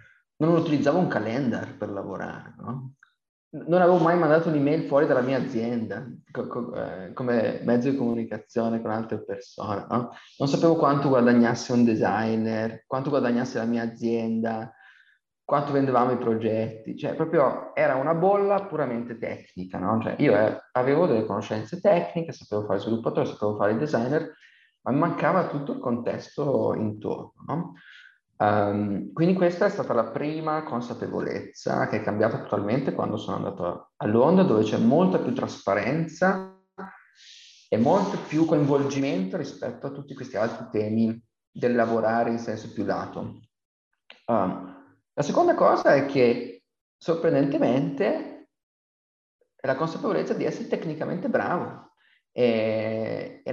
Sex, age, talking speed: male, 30-49, 140 wpm